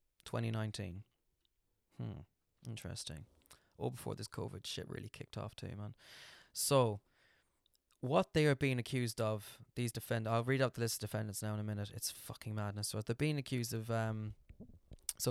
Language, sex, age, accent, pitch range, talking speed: English, male, 20-39, British, 105-150 Hz, 170 wpm